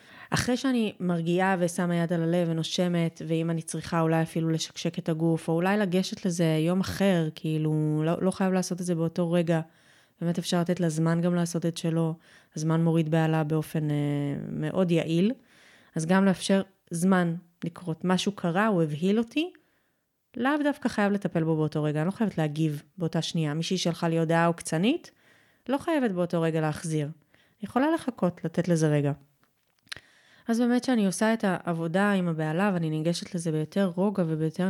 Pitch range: 160-200 Hz